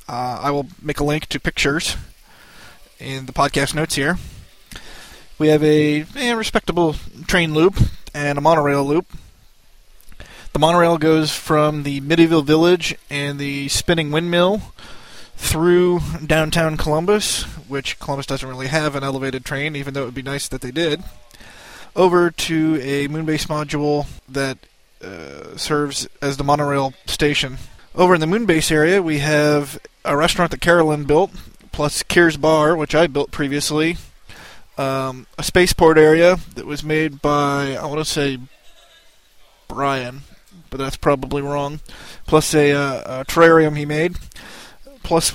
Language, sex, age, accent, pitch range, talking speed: English, male, 20-39, American, 145-165 Hz, 145 wpm